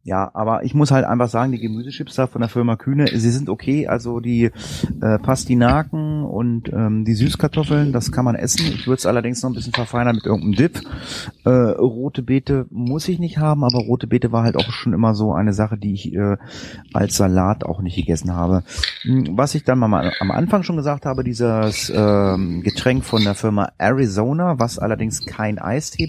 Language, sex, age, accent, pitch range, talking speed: German, male, 30-49, German, 105-135 Hz, 200 wpm